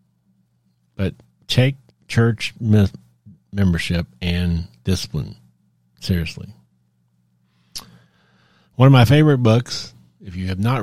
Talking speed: 90 wpm